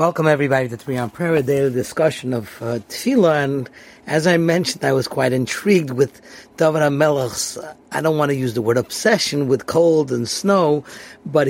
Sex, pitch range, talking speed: male, 130-170 Hz, 185 wpm